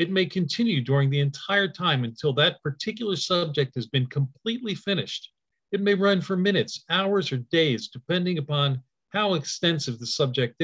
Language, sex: English, male